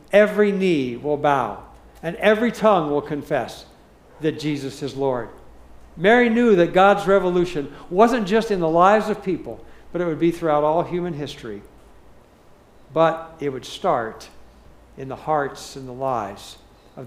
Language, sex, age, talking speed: English, male, 60-79, 155 wpm